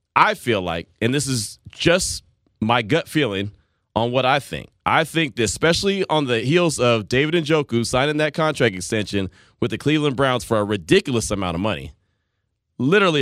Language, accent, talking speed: English, American, 175 wpm